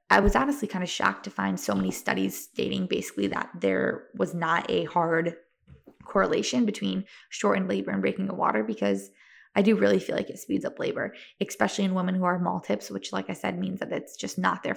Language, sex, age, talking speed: English, female, 20-39, 215 wpm